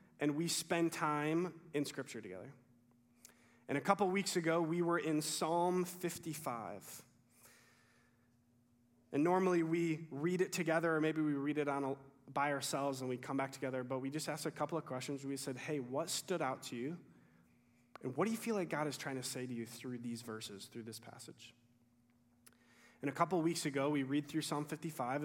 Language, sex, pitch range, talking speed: English, male, 120-160 Hz, 190 wpm